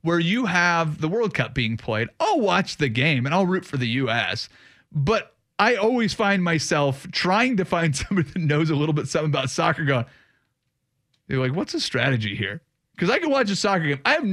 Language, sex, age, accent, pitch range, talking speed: English, male, 30-49, American, 135-180 Hz, 220 wpm